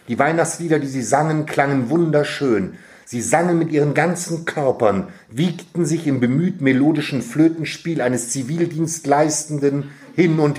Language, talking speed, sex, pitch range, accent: German, 130 wpm, male, 135-160 Hz, German